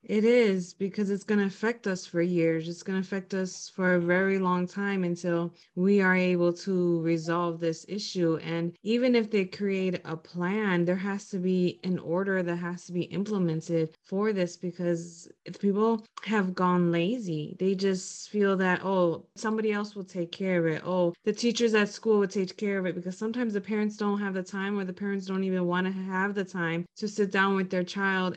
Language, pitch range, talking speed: English, 175-205 Hz, 210 wpm